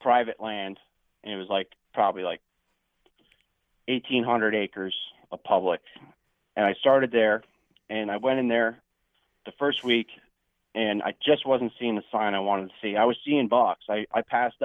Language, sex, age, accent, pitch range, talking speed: English, male, 30-49, American, 100-125 Hz, 170 wpm